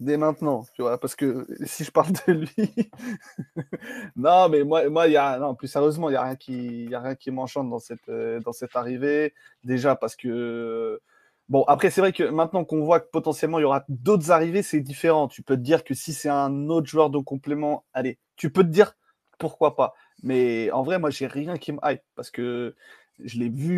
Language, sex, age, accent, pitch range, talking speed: French, male, 20-39, French, 130-165 Hz, 210 wpm